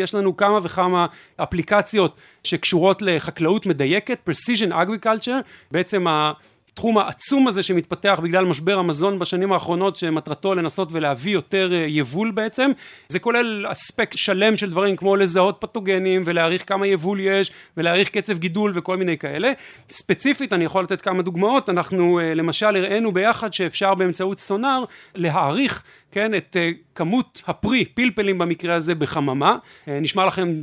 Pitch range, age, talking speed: 170-215 Hz, 40-59, 135 wpm